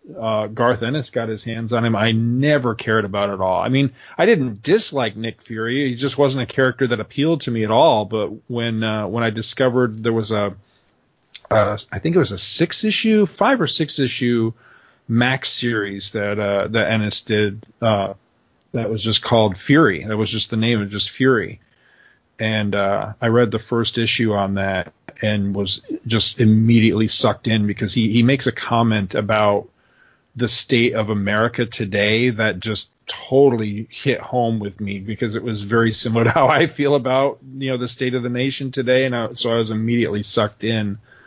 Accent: American